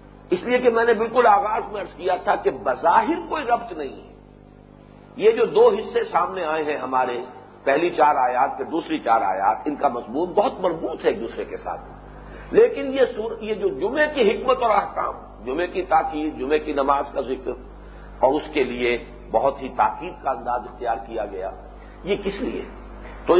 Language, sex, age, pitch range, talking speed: English, male, 50-69, 160-250 Hz, 190 wpm